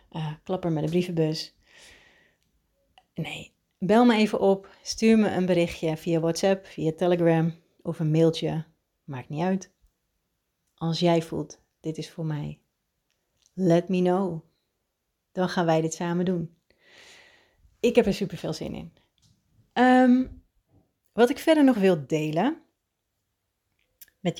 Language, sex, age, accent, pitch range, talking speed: Dutch, female, 30-49, Dutch, 160-195 Hz, 135 wpm